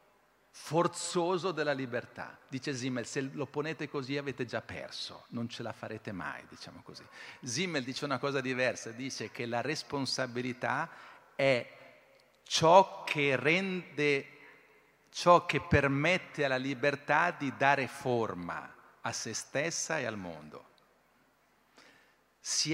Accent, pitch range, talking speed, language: native, 120-145 Hz, 125 wpm, Italian